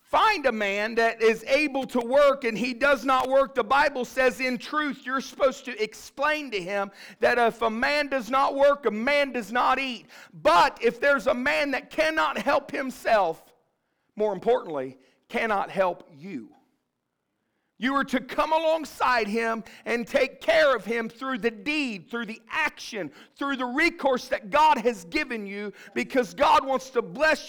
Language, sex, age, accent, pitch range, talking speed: English, male, 50-69, American, 210-280 Hz, 175 wpm